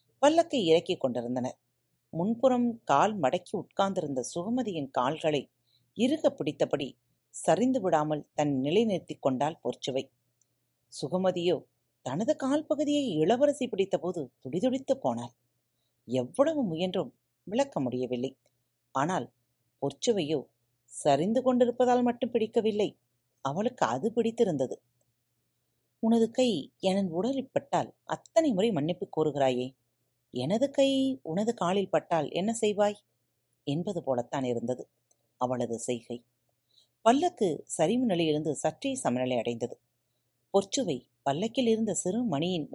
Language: Tamil